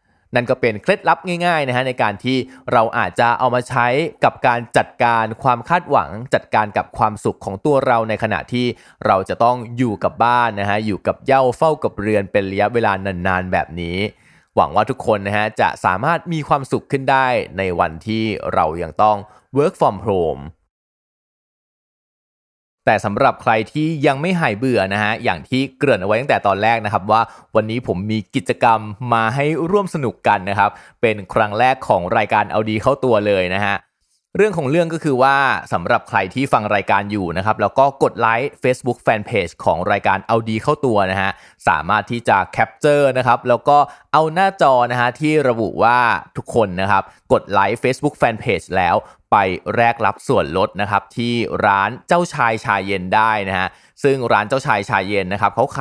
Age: 20-39